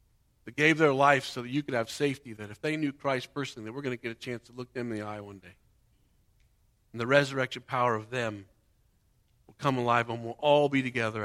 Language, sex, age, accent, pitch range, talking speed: English, male, 50-69, American, 110-140 Hz, 240 wpm